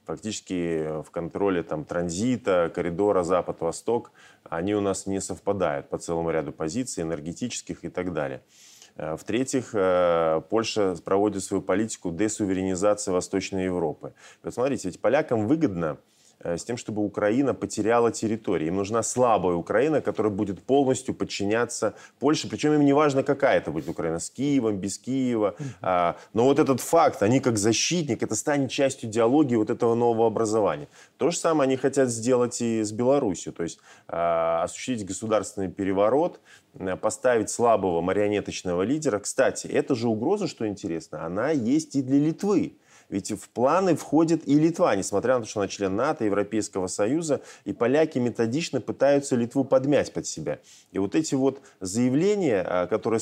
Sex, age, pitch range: male, 20-39, 95-130 Hz